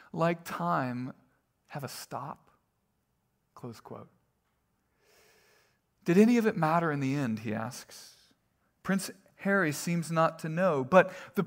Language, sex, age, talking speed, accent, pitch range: English, male, 40-59, 130 wpm, American, 135-185 Hz